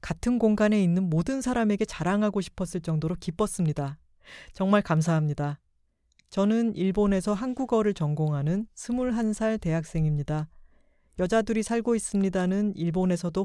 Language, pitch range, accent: Korean, 160-210 Hz, native